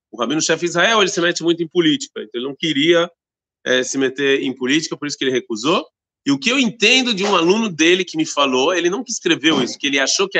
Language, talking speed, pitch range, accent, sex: Portuguese, 255 wpm, 165-220 Hz, Brazilian, male